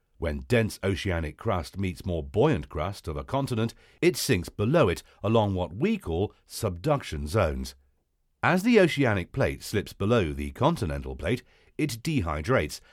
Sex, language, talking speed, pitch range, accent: male, English, 150 wpm, 80-125 Hz, British